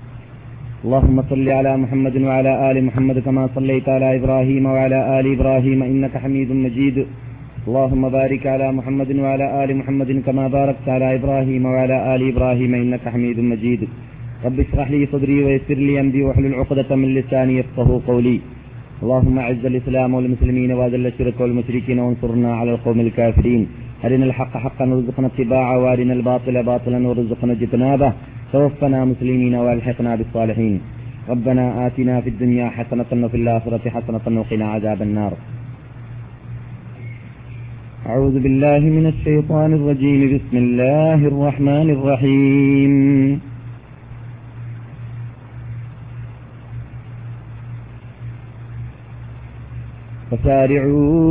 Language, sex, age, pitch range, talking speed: Malayalam, male, 30-49, 120-135 Hz, 115 wpm